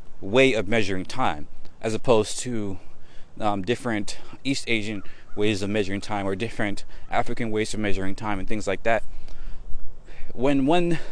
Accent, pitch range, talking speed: American, 95-125 Hz, 150 wpm